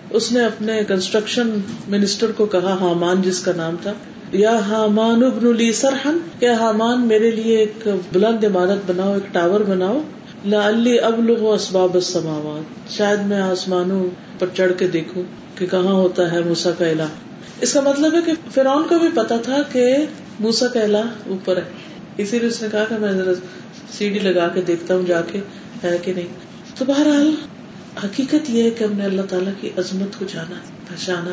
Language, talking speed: Urdu, 170 wpm